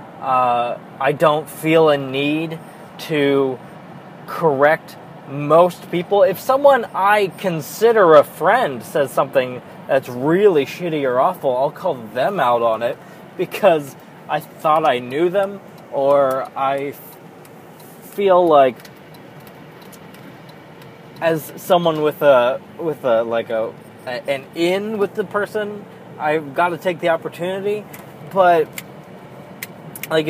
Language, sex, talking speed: English, male, 125 wpm